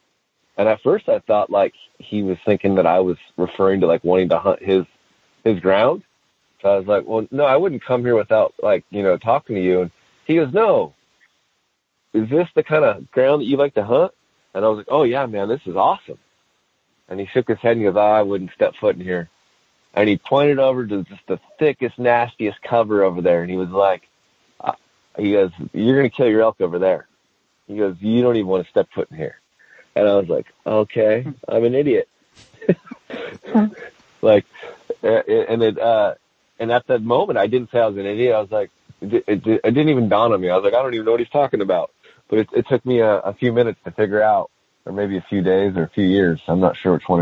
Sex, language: male, English